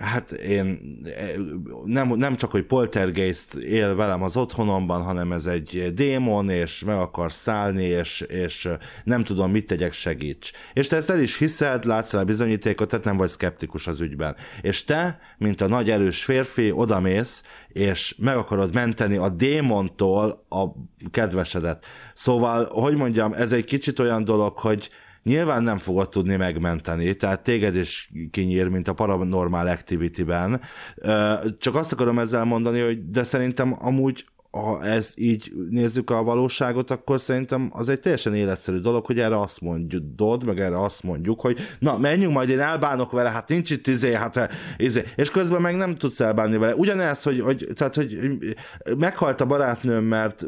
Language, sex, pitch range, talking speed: Hungarian, male, 95-130 Hz, 160 wpm